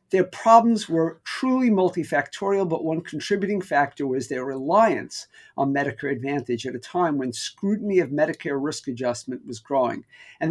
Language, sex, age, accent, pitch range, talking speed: English, male, 50-69, American, 140-190 Hz, 155 wpm